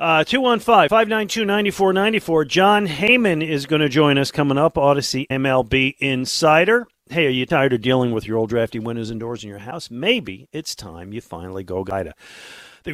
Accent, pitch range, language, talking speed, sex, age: American, 120-175 Hz, English, 180 wpm, male, 50-69